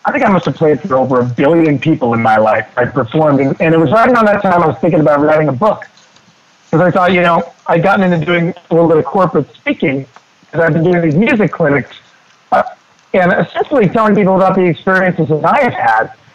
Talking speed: 240 wpm